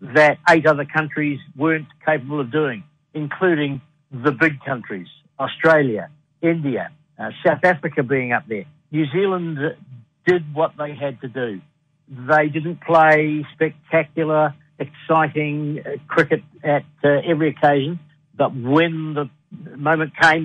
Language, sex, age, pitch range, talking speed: English, male, 60-79, 145-165 Hz, 125 wpm